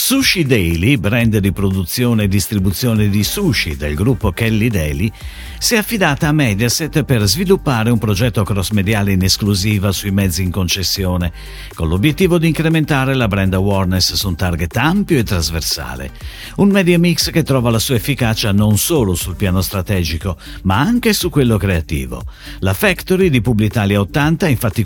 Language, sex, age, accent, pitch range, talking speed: Italian, male, 50-69, native, 95-145 Hz, 160 wpm